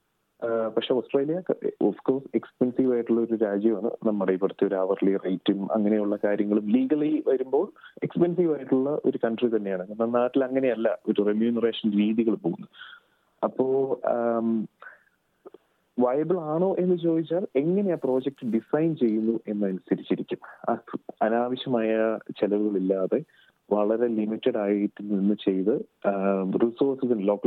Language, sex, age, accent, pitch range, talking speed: Malayalam, male, 30-49, native, 105-145 Hz, 105 wpm